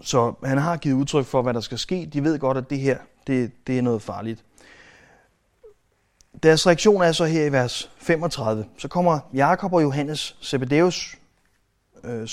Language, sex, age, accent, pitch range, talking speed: Danish, male, 30-49, native, 115-145 Hz, 175 wpm